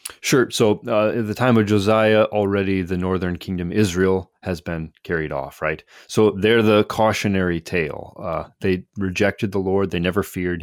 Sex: male